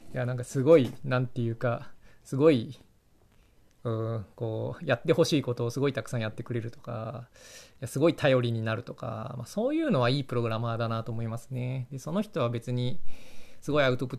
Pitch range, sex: 115-150 Hz, male